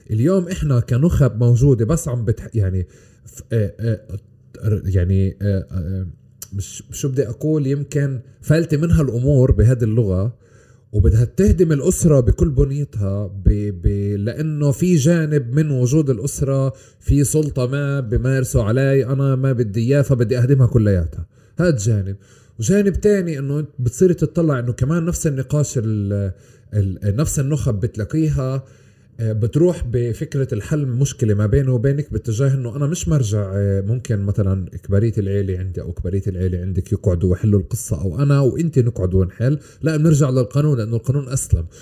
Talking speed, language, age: 135 wpm, Arabic, 30-49